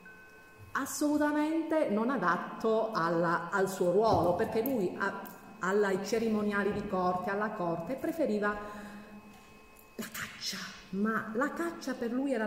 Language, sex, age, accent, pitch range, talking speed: Italian, female, 40-59, native, 175-240 Hz, 115 wpm